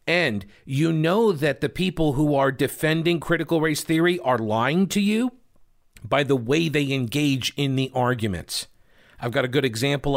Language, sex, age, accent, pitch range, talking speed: English, male, 50-69, American, 115-155 Hz, 170 wpm